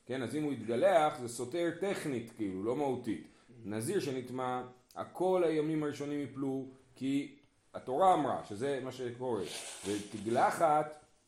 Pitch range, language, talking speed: 115-150 Hz, Hebrew, 130 wpm